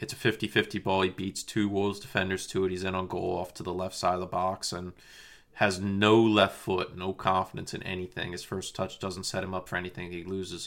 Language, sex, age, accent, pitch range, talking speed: English, male, 20-39, American, 95-110 Hz, 240 wpm